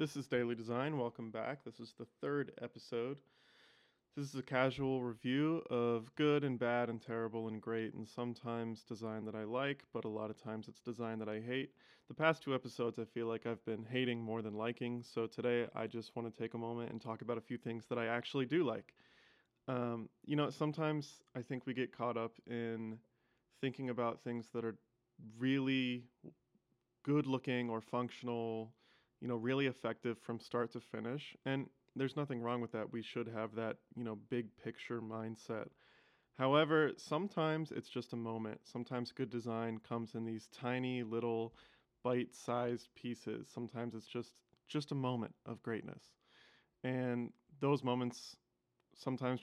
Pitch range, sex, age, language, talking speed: 115-125 Hz, male, 20-39, English, 175 wpm